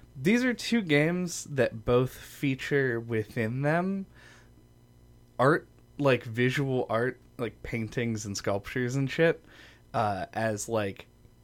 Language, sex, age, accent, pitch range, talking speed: English, male, 20-39, American, 105-130 Hz, 115 wpm